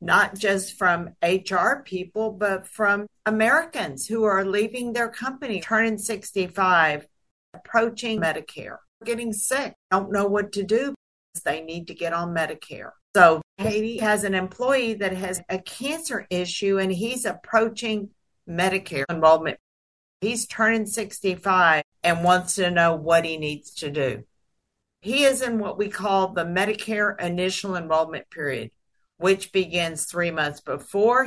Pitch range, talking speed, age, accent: 175-220 Hz, 140 wpm, 50-69, American